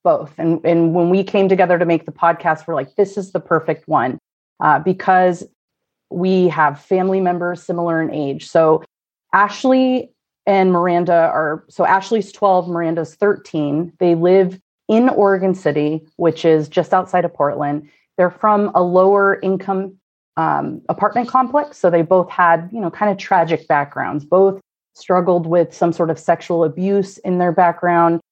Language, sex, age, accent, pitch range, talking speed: English, female, 30-49, American, 160-190 Hz, 165 wpm